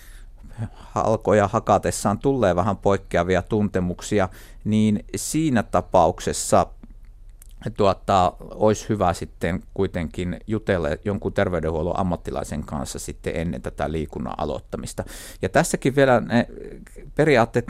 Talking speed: 100 wpm